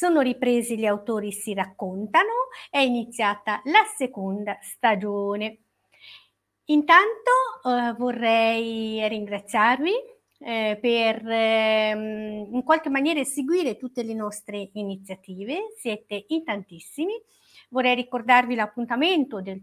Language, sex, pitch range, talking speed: Italian, female, 210-285 Hz, 100 wpm